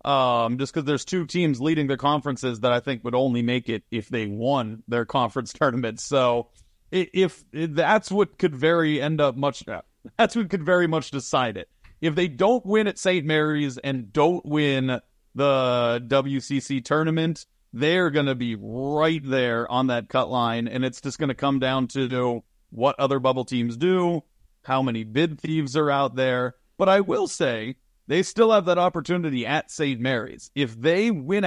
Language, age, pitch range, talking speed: English, 30-49, 125-155 Hz, 190 wpm